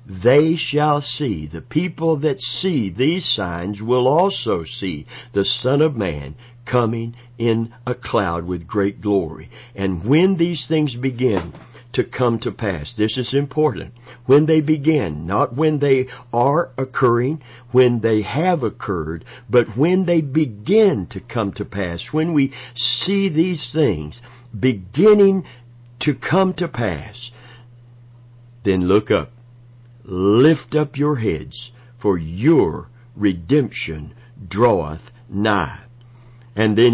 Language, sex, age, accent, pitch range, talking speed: English, male, 50-69, American, 105-135 Hz, 130 wpm